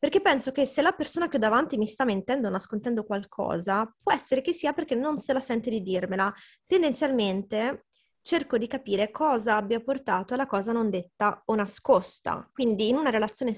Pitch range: 215-265 Hz